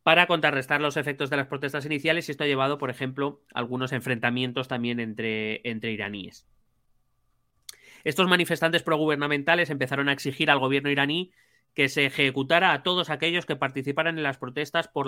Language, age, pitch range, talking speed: Spanish, 30-49, 120-145 Hz, 165 wpm